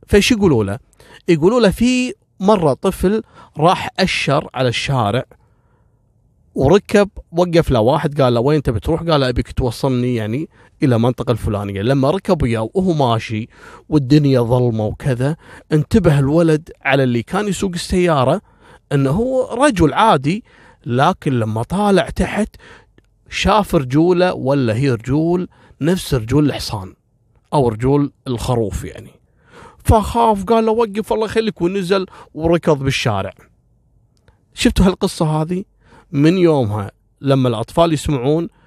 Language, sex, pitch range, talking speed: Arabic, male, 120-170 Hz, 125 wpm